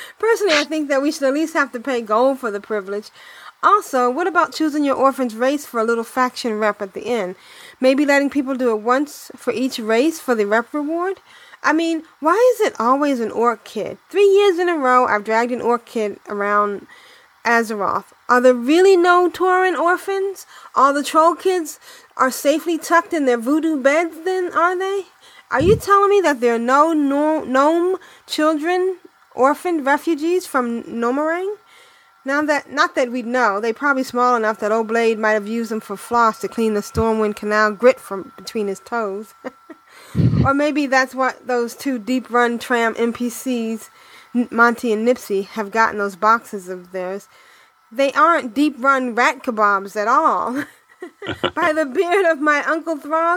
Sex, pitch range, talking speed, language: female, 230-330 Hz, 180 wpm, English